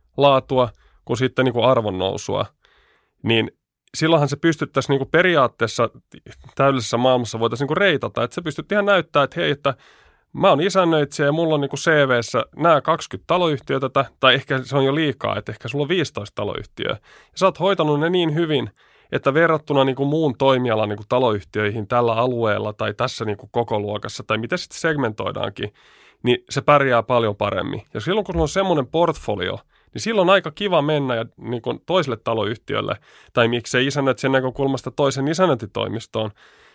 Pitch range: 115-160 Hz